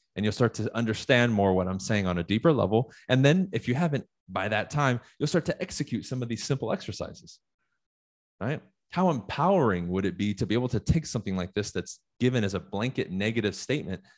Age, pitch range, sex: 30-49, 95-130 Hz, male